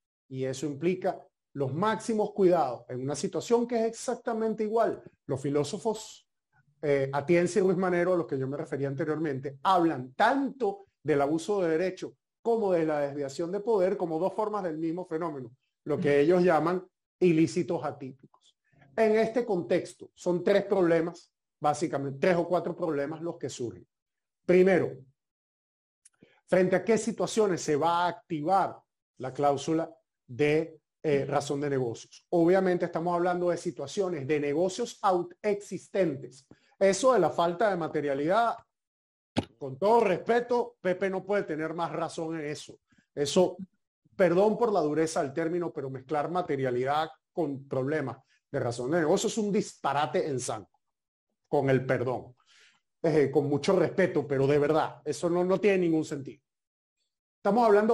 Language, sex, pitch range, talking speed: Spanish, male, 145-190 Hz, 150 wpm